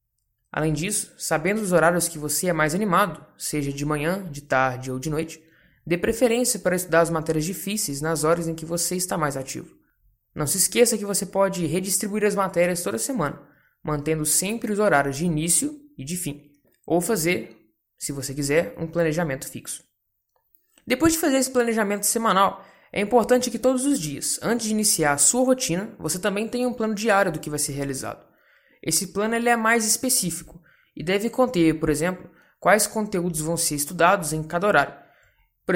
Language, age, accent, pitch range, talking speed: English, 20-39, Brazilian, 150-205 Hz, 185 wpm